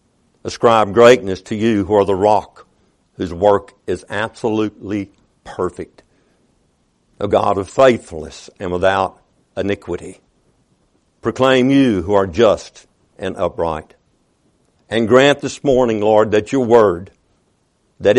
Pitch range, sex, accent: 110-140 Hz, male, American